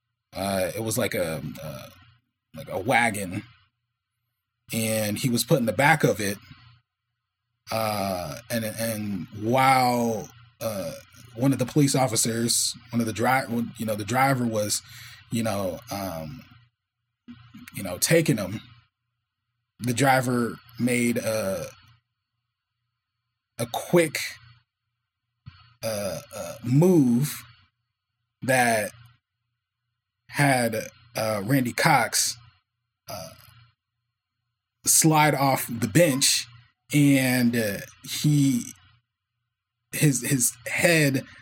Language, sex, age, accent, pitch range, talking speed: English, male, 20-39, American, 115-130 Hz, 100 wpm